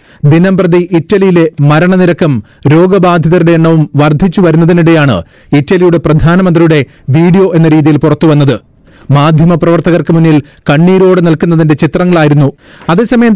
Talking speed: 80 wpm